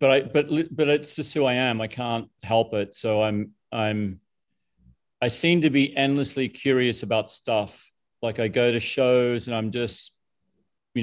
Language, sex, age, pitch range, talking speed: English, male, 40-59, 110-130 Hz, 180 wpm